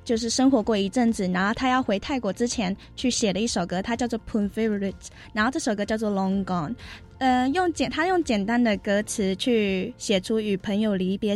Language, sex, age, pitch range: Chinese, female, 20-39, 190-235 Hz